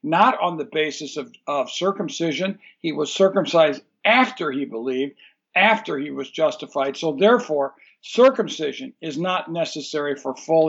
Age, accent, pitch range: 60-79, American, 155-200 Hz